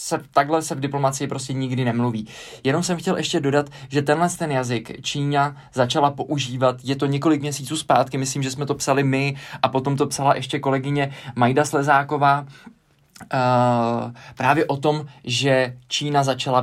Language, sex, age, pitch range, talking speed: Czech, male, 20-39, 125-145 Hz, 155 wpm